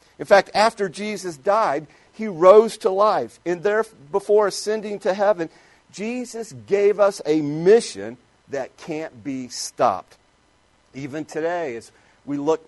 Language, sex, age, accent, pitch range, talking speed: English, male, 50-69, American, 140-195 Hz, 135 wpm